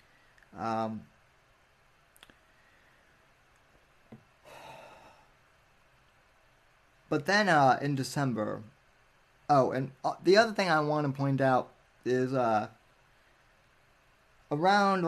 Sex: male